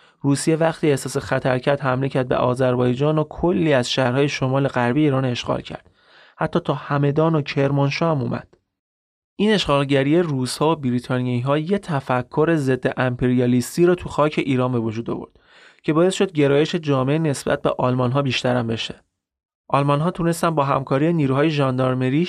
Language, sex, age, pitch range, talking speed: Persian, male, 30-49, 125-155 Hz, 160 wpm